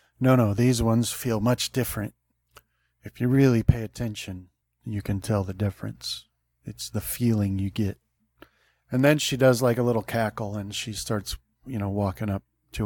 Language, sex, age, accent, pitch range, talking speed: English, male, 40-59, American, 100-120 Hz, 175 wpm